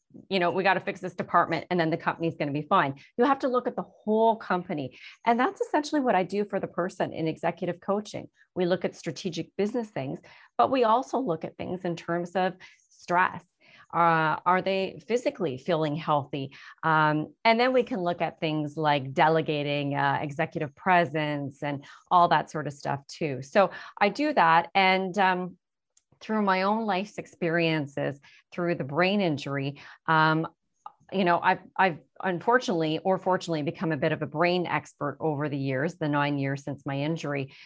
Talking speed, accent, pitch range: 185 wpm, American, 150-190 Hz